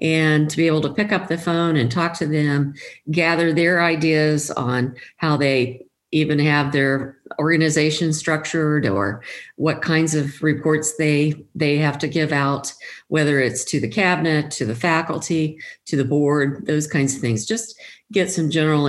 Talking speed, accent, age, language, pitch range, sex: 170 wpm, American, 50-69, English, 130-165 Hz, female